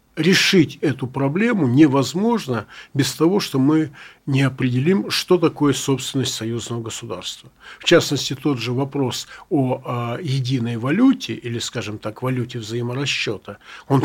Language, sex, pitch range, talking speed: Russian, male, 125-165 Hz, 130 wpm